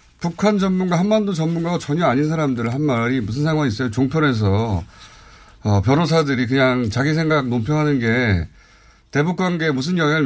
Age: 30-49